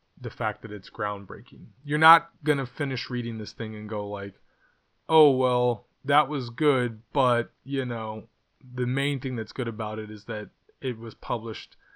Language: English